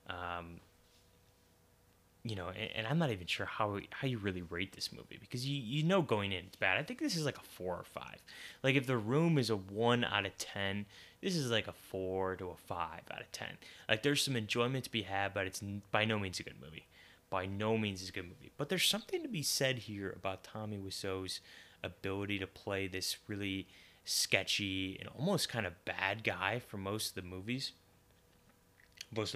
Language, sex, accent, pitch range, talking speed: English, male, American, 95-125 Hz, 215 wpm